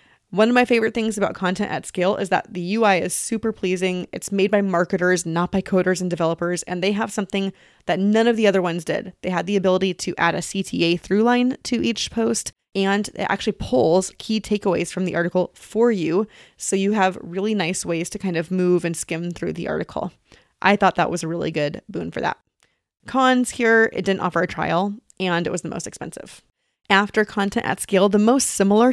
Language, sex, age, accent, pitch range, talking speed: English, female, 20-39, American, 180-215 Hz, 220 wpm